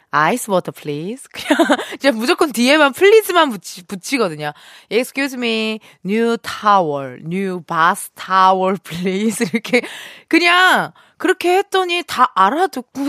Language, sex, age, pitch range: Korean, female, 20-39, 175-295 Hz